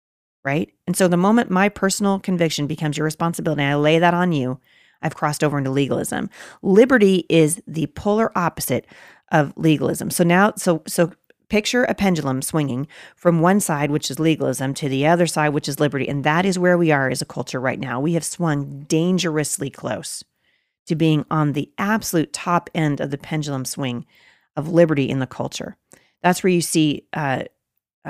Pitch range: 150-200 Hz